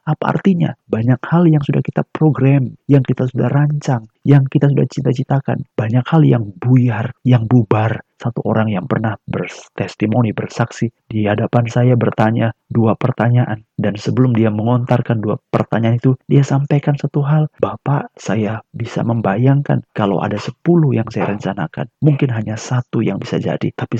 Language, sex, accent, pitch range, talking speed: Indonesian, male, native, 110-140 Hz, 155 wpm